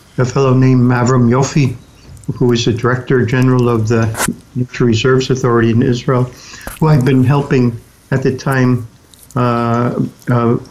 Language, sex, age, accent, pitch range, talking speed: English, male, 60-79, American, 120-130 Hz, 135 wpm